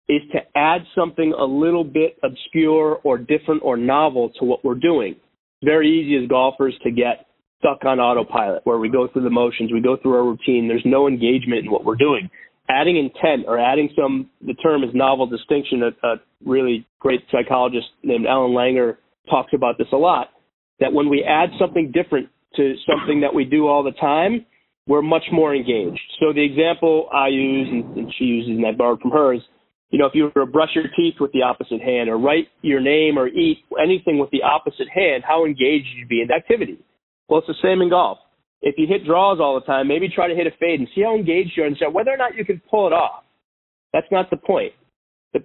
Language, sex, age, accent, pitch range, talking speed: English, male, 30-49, American, 130-165 Hz, 225 wpm